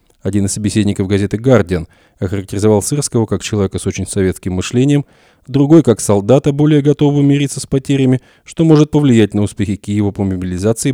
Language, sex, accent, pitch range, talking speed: Russian, male, native, 95-115 Hz, 160 wpm